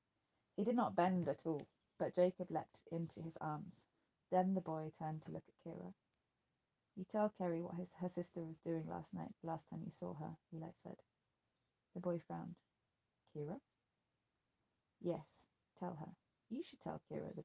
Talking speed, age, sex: 175 wpm, 20-39, female